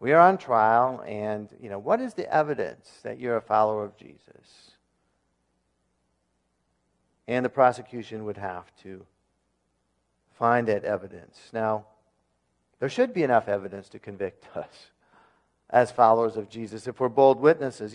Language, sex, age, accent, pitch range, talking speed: English, male, 50-69, American, 95-155 Hz, 145 wpm